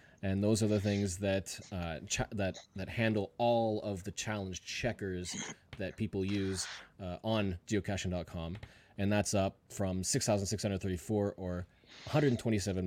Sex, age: male, 20-39